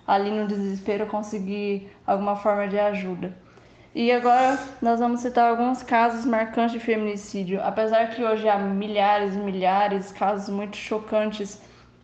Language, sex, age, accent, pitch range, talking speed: Portuguese, female, 10-29, Brazilian, 205-235 Hz, 145 wpm